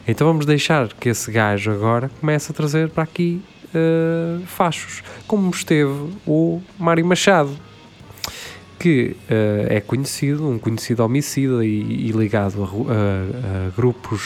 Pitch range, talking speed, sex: 105-165 Hz, 140 wpm, male